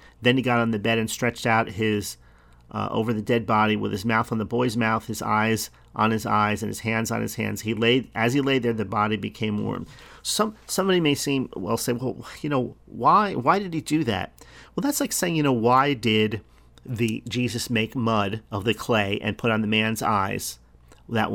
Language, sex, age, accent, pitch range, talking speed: English, male, 40-59, American, 105-125 Hz, 225 wpm